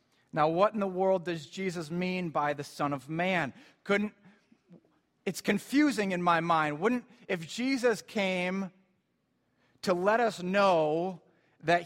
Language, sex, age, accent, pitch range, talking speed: English, male, 30-49, American, 150-190 Hz, 140 wpm